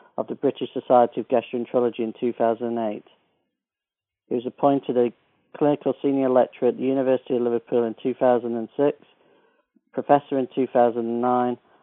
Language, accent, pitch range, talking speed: English, British, 120-135 Hz, 125 wpm